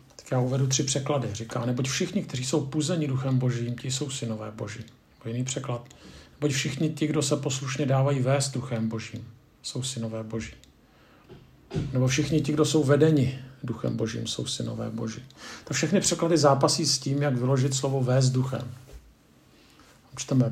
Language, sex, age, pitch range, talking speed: Czech, male, 50-69, 125-145 Hz, 165 wpm